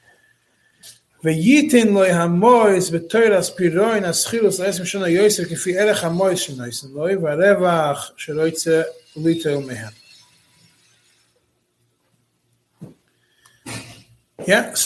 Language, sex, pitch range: English, male, 150-200 Hz